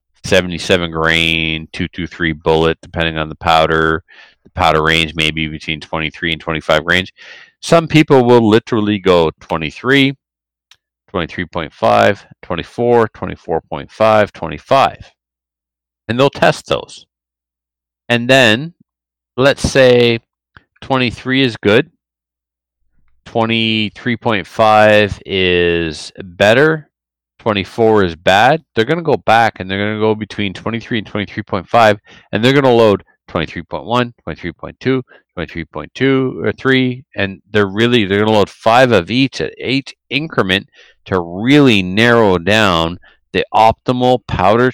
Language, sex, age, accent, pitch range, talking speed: English, male, 40-59, American, 80-115 Hz, 115 wpm